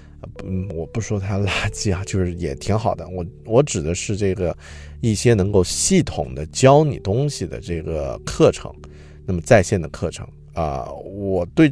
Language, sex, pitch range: Chinese, male, 80-110 Hz